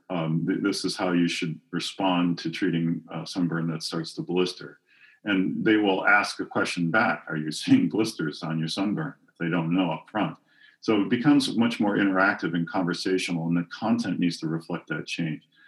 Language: English